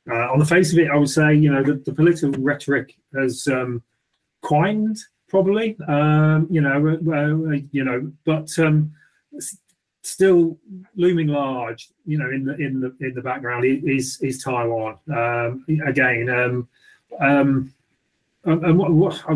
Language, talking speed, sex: English, 160 wpm, male